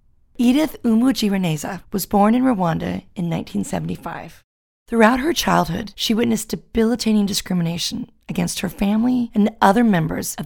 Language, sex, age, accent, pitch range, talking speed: English, female, 30-49, American, 160-220 Hz, 125 wpm